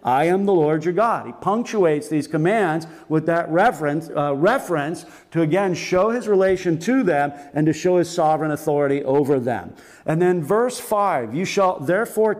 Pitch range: 155-195 Hz